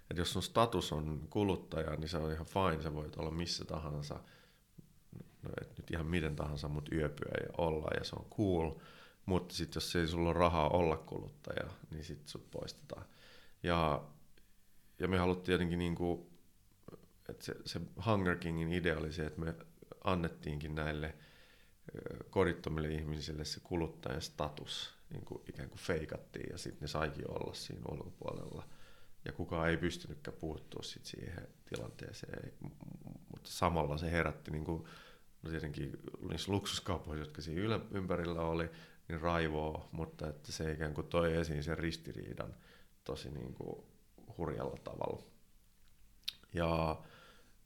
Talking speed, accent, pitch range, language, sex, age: 145 wpm, native, 80-90 Hz, Finnish, male, 30-49